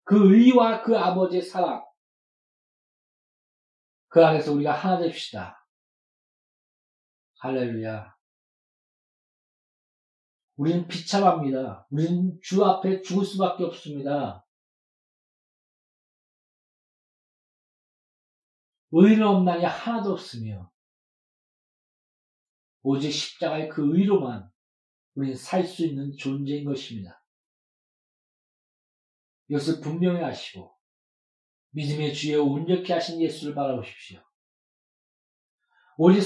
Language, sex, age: Korean, male, 40-59